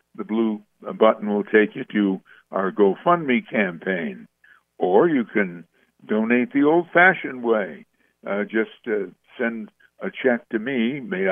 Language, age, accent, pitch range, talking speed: English, 60-79, American, 105-150 Hz, 140 wpm